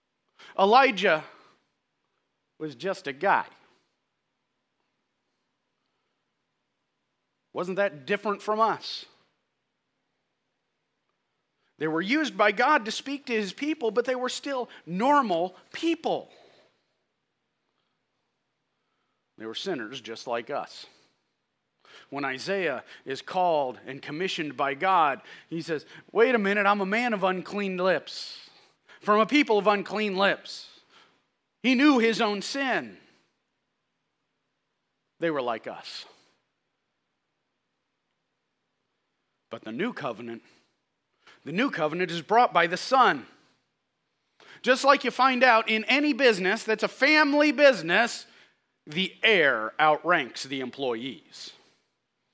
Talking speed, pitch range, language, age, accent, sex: 110 wpm, 170-255 Hz, English, 40-59, American, male